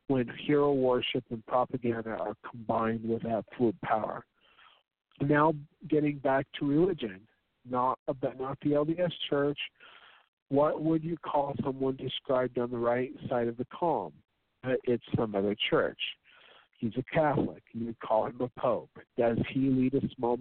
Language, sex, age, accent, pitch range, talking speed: English, male, 50-69, American, 120-150 Hz, 150 wpm